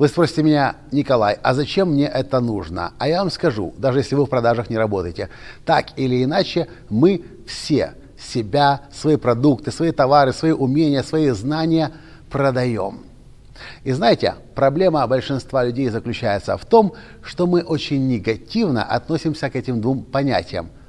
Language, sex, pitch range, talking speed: Russian, male, 125-170 Hz, 150 wpm